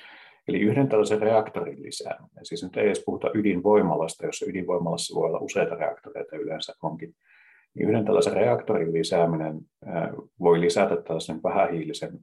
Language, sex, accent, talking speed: Finnish, male, native, 130 wpm